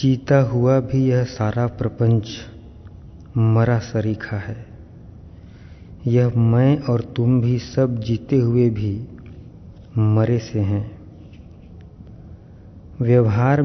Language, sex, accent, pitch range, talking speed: Hindi, male, native, 105-125 Hz, 95 wpm